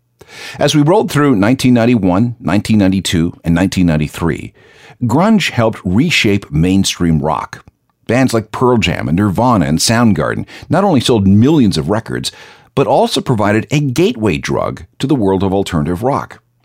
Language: English